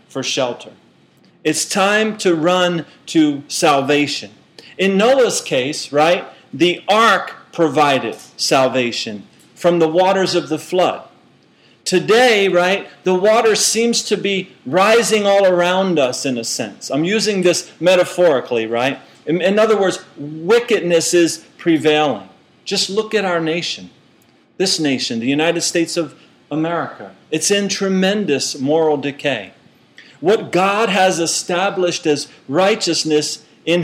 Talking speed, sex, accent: 130 wpm, male, American